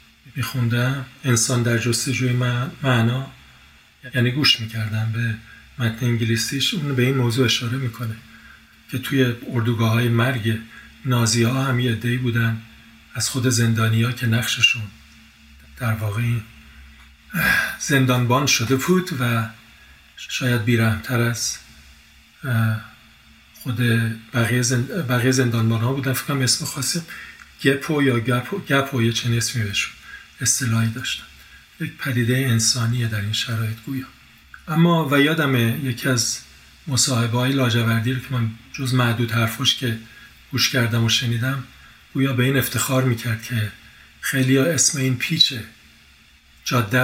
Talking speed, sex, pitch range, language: 125 wpm, male, 115-130 Hz, Persian